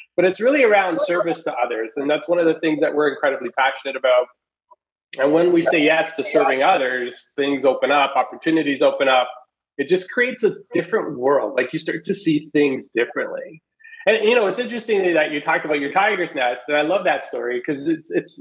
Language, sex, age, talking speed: English, male, 30-49, 210 wpm